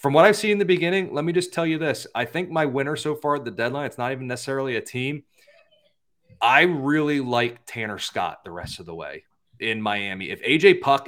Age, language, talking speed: 30-49, English, 235 wpm